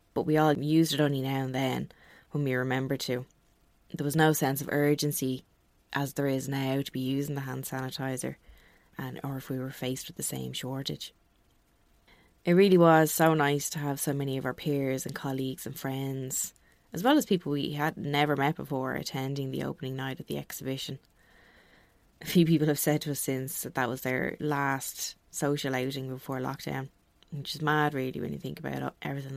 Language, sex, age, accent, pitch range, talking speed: English, female, 20-39, Irish, 130-150 Hz, 200 wpm